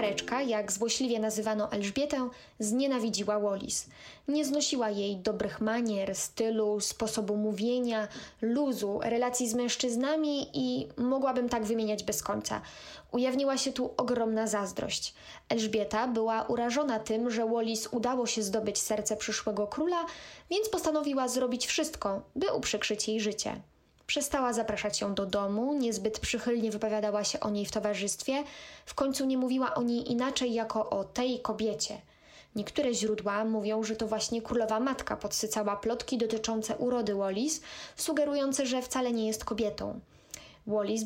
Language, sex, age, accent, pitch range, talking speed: Polish, female, 20-39, native, 215-255 Hz, 135 wpm